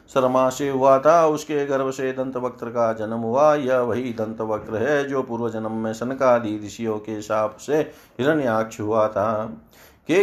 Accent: native